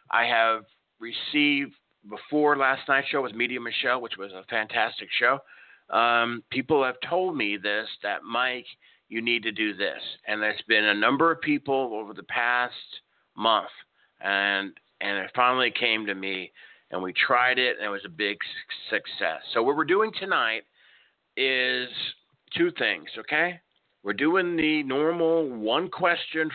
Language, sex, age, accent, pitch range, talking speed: English, male, 50-69, American, 115-155 Hz, 160 wpm